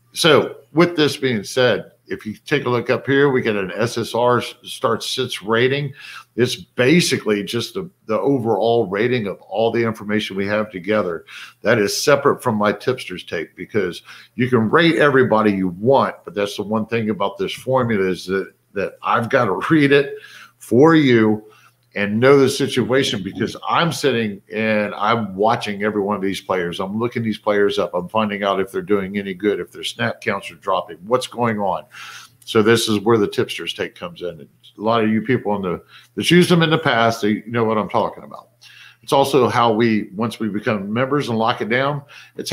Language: English